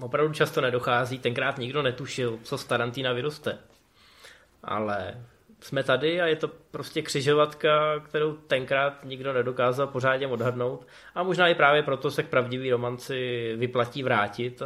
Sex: male